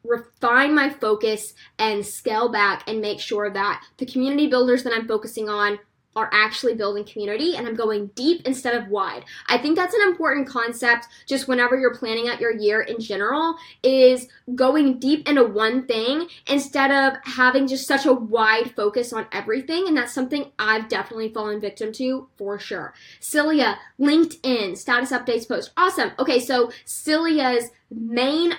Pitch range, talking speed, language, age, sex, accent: 225-275 Hz, 165 wpm, English, 10-29, female, American